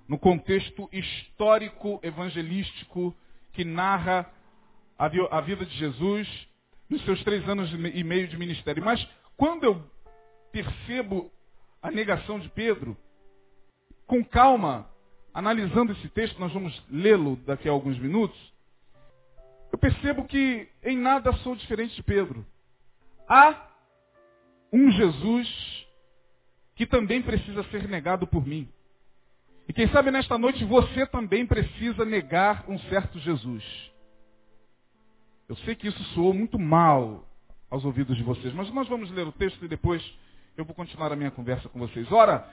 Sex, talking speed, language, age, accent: male, 135 wpm, Portuguese, 40-59, Brazilian